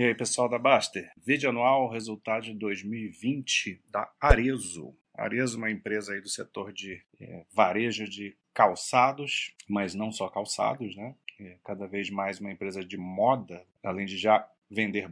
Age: 30-49